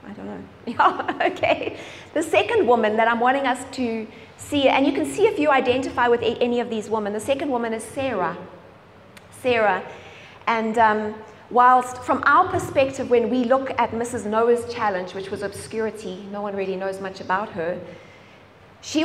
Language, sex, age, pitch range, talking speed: English, female, 30-49, 205-260 Hz, 175 wpm